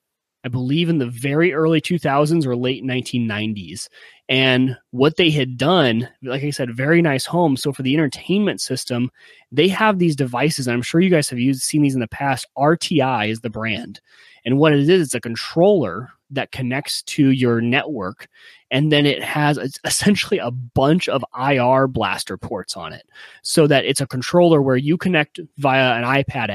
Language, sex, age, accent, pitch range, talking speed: English, male, 30-49, American, 120-150 Hz, 190 wpm